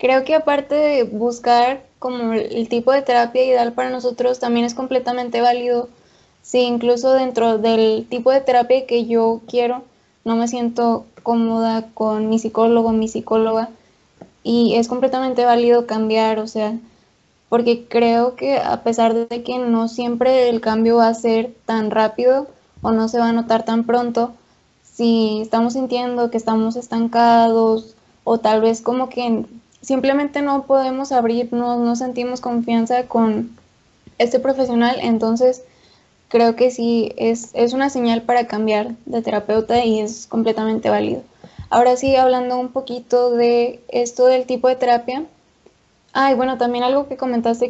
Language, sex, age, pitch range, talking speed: Spanish, female, 10-29, 230-250 Hz, 155 wpm